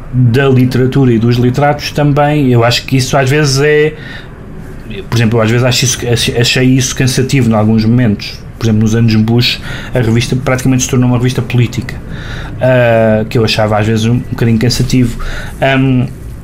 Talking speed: 185 wpm